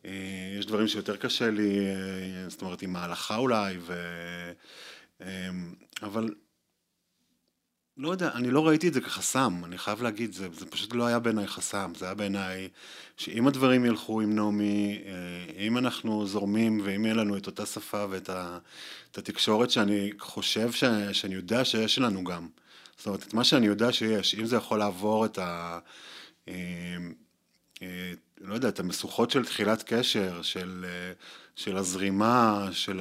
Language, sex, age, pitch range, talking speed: Hebrew, male, 30-49, 95-110 Hz, 145 wpm